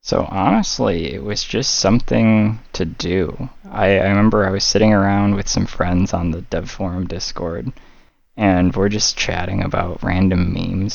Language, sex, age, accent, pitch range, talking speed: English, male, 20-39, American, 90-110 Hz, 165 wpm